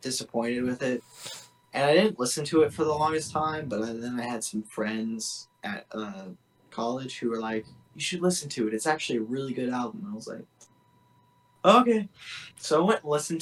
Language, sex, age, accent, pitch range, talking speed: English, male, 20-39, American, 110-155 Hz, 205 wpm